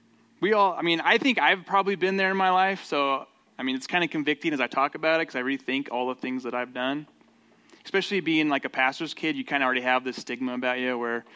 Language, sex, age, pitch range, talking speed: English, male, 20-39, 130-180 Hz, 265 wpm